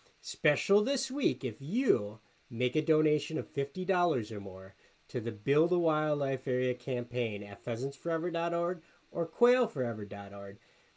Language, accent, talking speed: English, American, 125 wpm